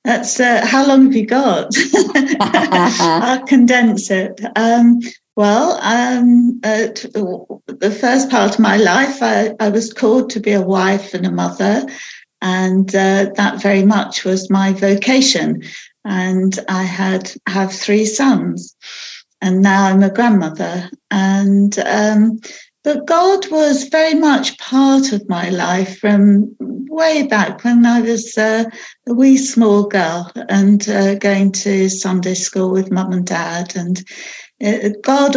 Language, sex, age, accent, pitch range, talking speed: English, female, 50-69, British, 195-260 Hz, 140 wpm